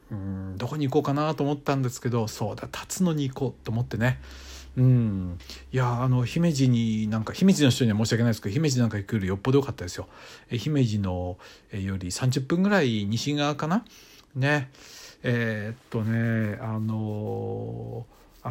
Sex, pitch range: male, 110-145 Hz